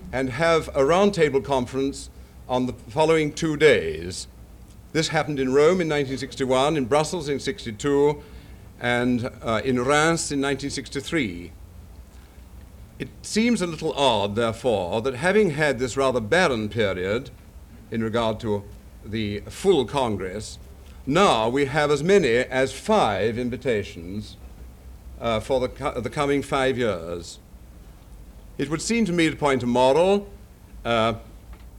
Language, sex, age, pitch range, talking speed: English, male, 60-79, 105-145 Hz, 135 wpm